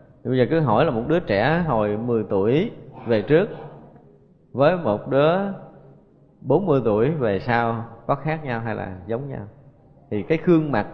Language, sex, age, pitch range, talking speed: Vietnamese, male, 20-39, 110-150 Hz, 170 wpm